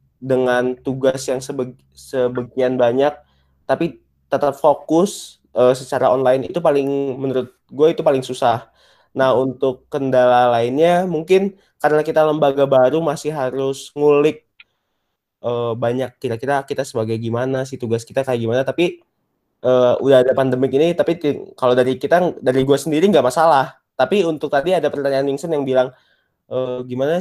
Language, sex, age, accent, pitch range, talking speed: Indonesian, male, 20-39, native, 125-150 Hz, 145 wpm